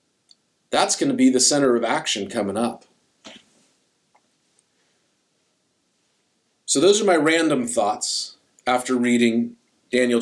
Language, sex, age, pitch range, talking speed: English, male, 40-59, 135-190 Hz, 110 wpm